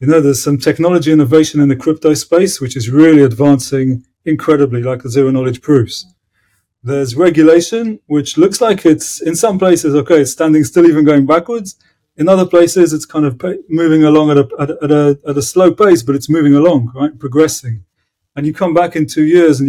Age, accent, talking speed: 30-49, British, 190 wpm